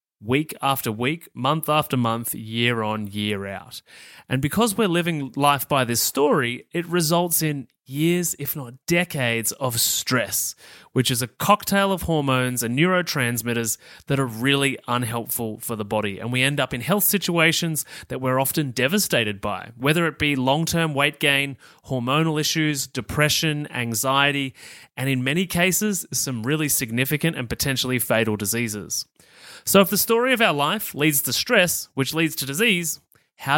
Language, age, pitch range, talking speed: English, 30-49, 120-160 Hz, 160 wpm